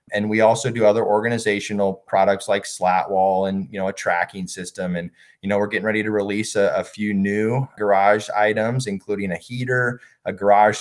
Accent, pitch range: American, 95-115 Hz